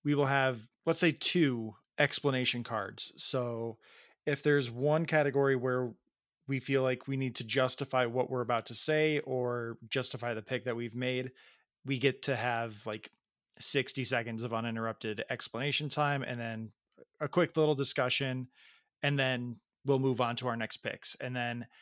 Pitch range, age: 120-145 Hz, 30-49